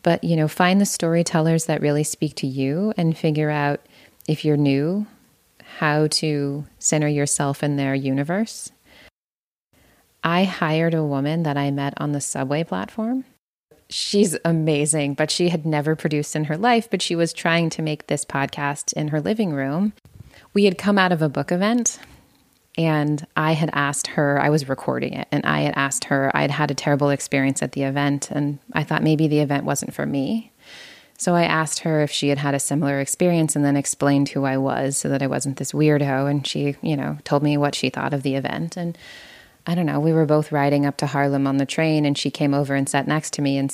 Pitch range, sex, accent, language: 140-170 Hz, female, American, English